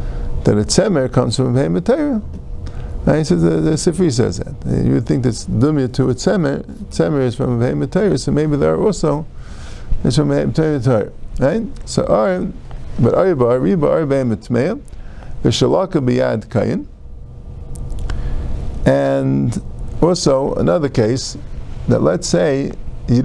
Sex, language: male, English